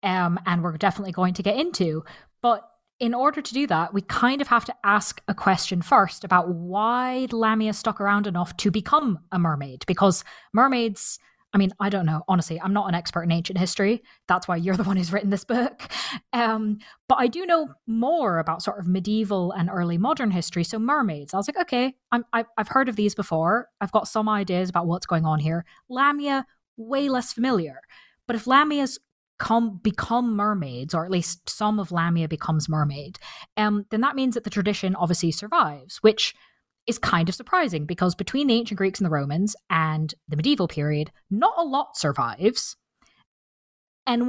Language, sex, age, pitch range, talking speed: English, female, 20-39, 175-240 Hz, 190 wpm